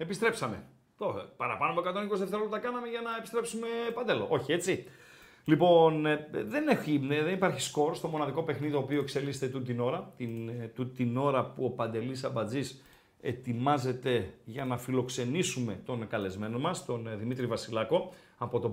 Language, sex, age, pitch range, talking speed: Greek, male, 40-59, 135-195 Hz, 145 wpm